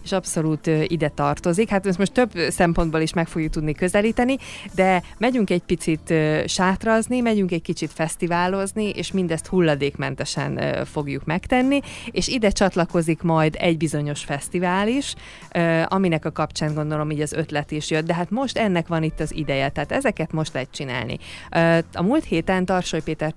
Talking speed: 175 wpm